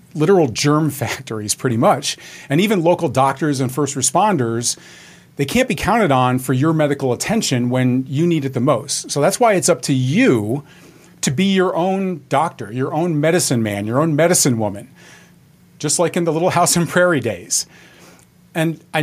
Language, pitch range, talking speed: English, 130-170 Hz, 185 wpm